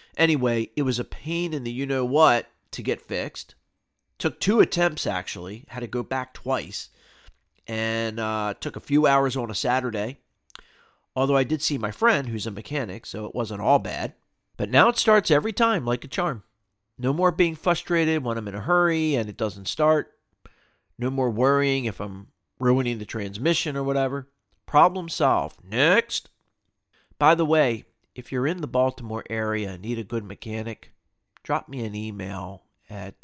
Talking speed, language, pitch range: 175 wpm, English, 105-135 Hz